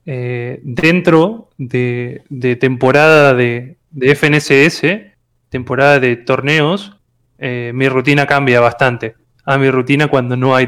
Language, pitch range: English, 125-150 Hz